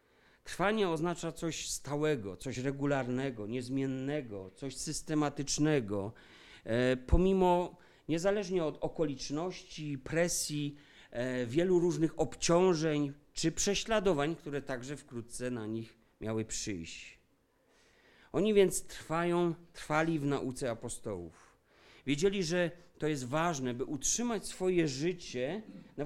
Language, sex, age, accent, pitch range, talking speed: Polish, male, 40-59, native, 130-170 Hz, 100 wpm